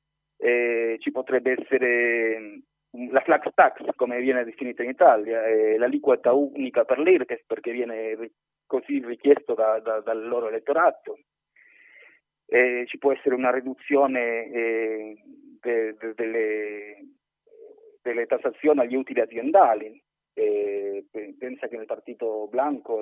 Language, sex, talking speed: Italian, male, 130 wpm